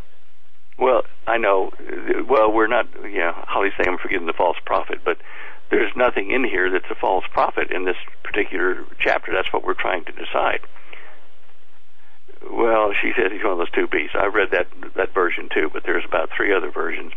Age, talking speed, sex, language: 60-79, 190 wpm, male, English